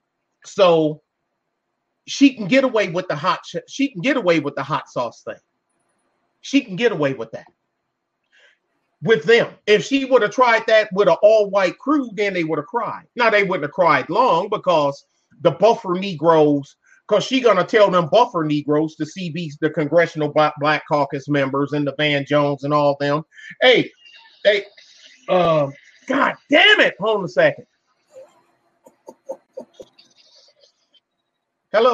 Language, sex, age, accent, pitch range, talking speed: English, male, 30-49, American, 155-210 Hz, 160 wpm